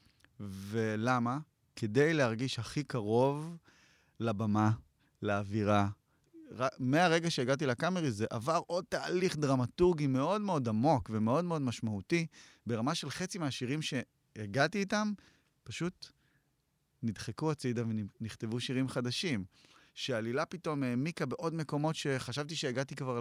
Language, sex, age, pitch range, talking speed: Hebrew, male, 30-49, 115-145 Hz, 110 wpm